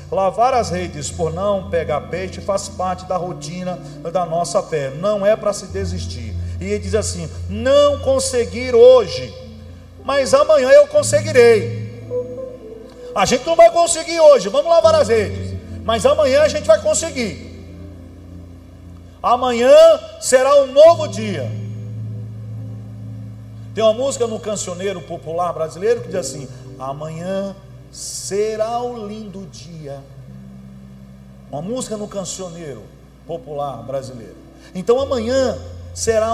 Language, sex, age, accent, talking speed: Portuguese, male, 40-59, Brazilian, 125 wpm